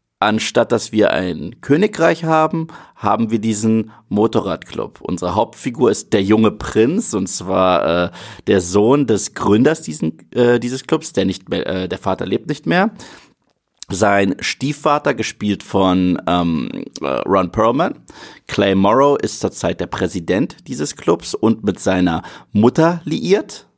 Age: 30-49